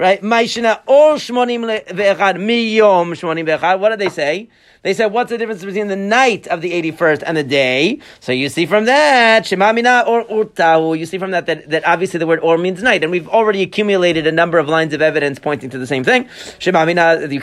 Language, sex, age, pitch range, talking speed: English, male, 30-49, 165-215 Hz, 180 wpm